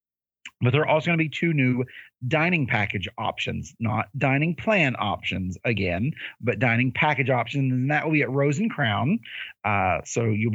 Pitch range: 115-145 Hz